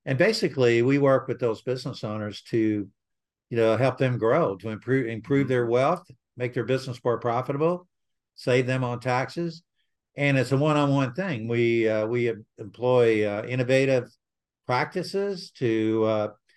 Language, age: English, 50-69